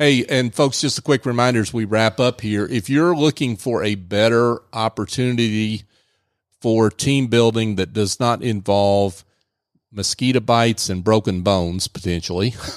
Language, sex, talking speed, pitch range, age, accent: English, male, 150 wpm, 105-130 Hz, 40-59, American